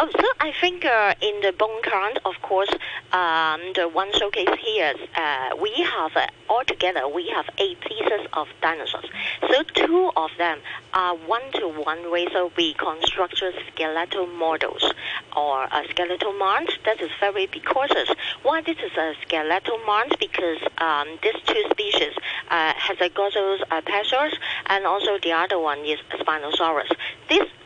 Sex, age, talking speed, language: female, 50-69, 155 wpm, English